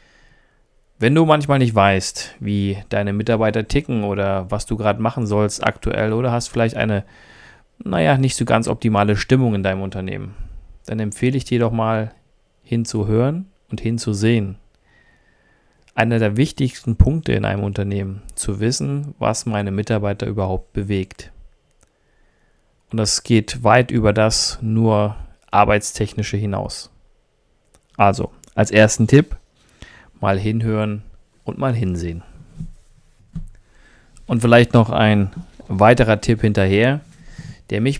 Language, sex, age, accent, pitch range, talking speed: German, male, 40-59, German, 100-115 Hz, 125 wpm